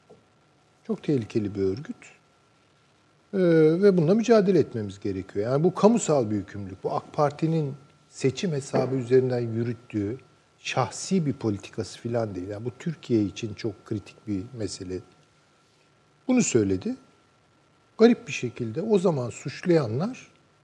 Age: 50-69